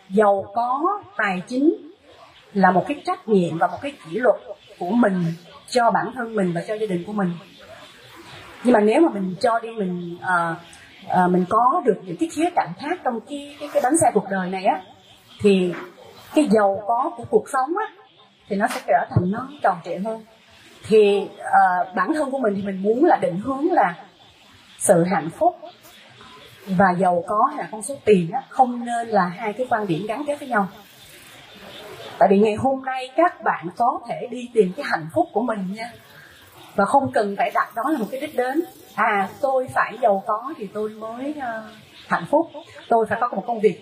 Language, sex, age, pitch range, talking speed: Vietnamese, female, 30-49, 195-285 Hz, 205 wpm